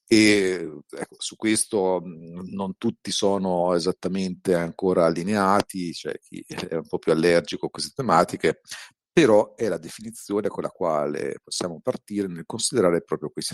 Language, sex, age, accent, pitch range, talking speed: Italian, male, 50-69, native, 85-105 Hz, 145 wpm